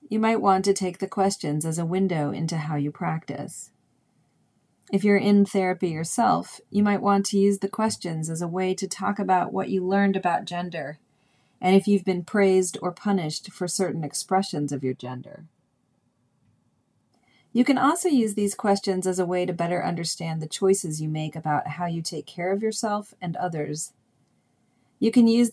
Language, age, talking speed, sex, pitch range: English, 40-59, 185 wpm, female, 160-200 Hz